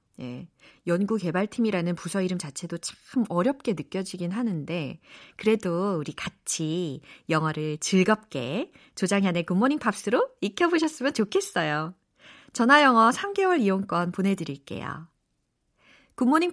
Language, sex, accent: Korean, female, native